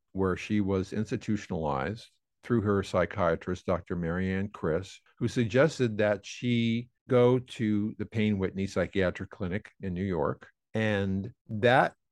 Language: English